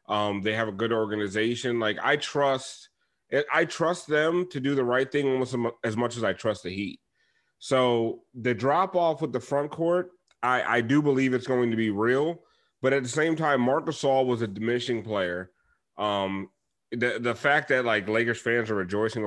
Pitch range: 115-140 Hz